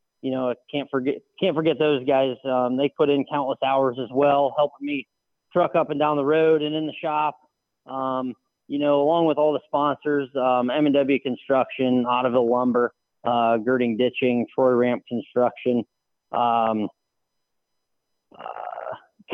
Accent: American